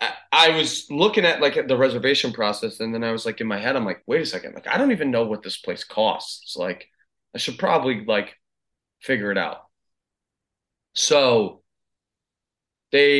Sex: male